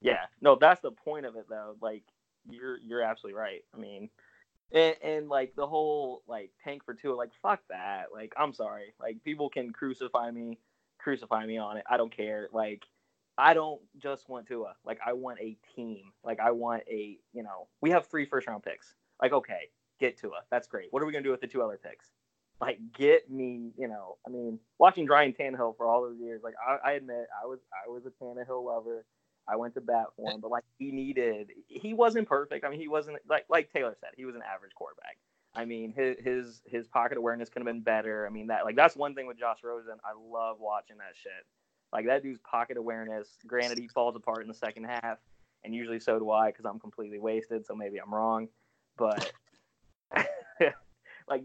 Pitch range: 110-135 Hz